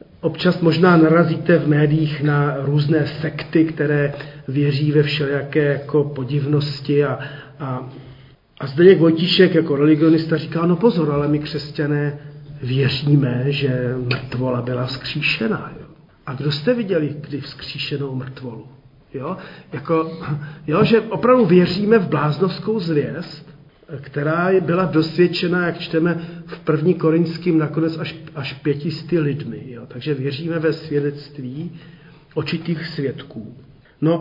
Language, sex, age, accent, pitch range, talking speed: Czech, male, 40-59, native, 145-180 Hz, 120 wpm